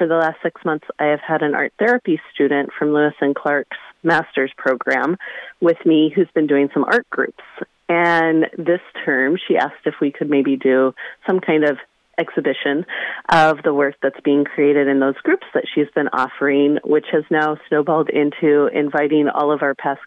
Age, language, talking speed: 30-49, English, 190 wpm